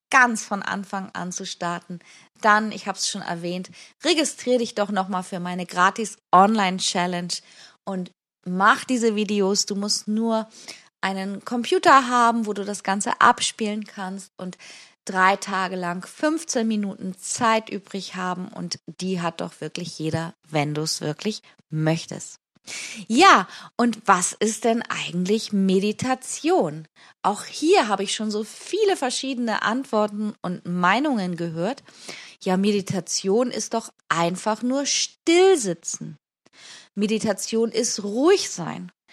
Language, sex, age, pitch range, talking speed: German, female, 20-39, 180-230 Hz, 130 wpm